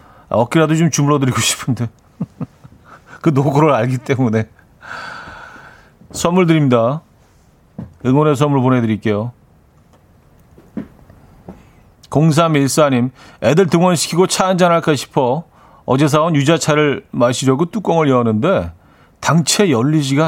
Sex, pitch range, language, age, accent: male, 120-160 Hz, Korean, 40-59, native